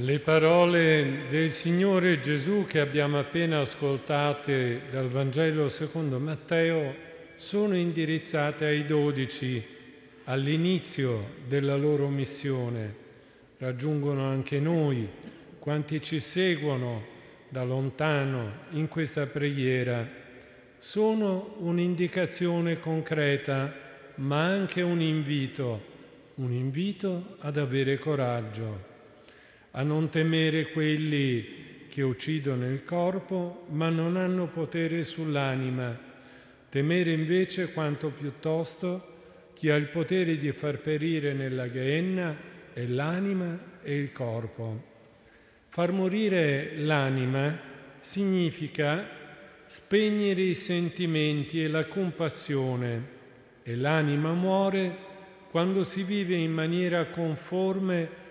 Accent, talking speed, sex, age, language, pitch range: native, 95 wpm, male, 50-69, Italian, 135-170 Hz